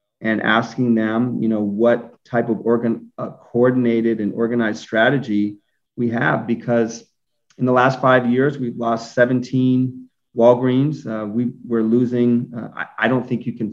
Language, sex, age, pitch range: English, male, 30-49, 110-130 Hz